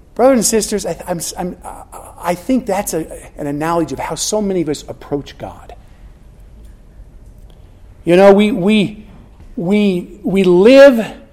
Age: 50-69